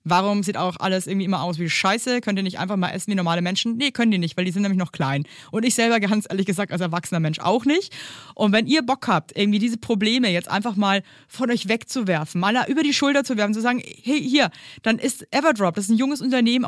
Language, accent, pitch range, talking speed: German, German, 180-240 Hz, 255 wpm